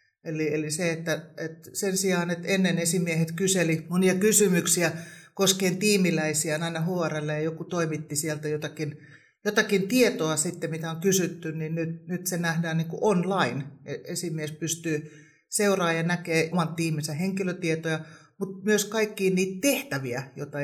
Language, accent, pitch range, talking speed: Finnish, native, 150-180 Hz, 145 wpm